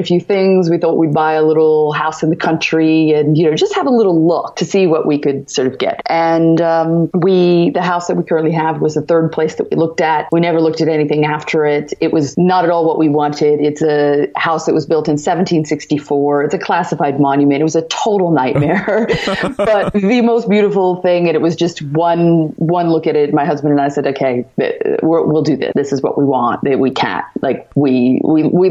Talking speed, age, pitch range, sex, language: 235 wpm, 30-49, 145-190 Hz, female, English